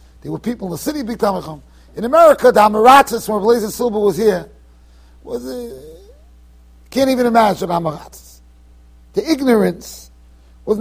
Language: English